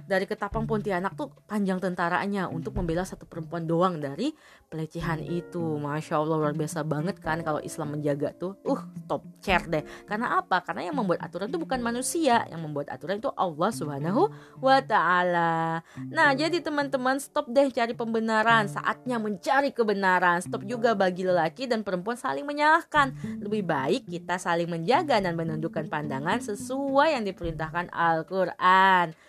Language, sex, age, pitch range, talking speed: Indonesian, female, 20-39, 160-230 Hz, 150 wpm